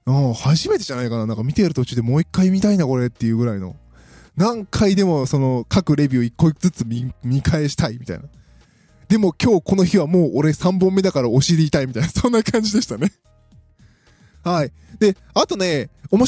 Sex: male